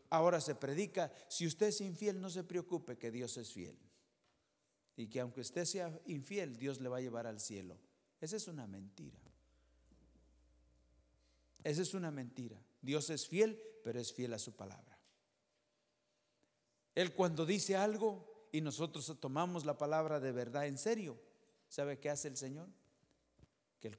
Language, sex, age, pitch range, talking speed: English, male, 50-69, 115-160 Hz, 160 wpm